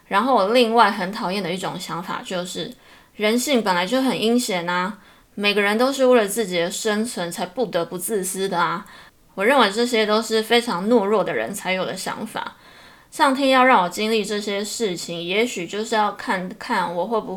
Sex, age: female, 20-39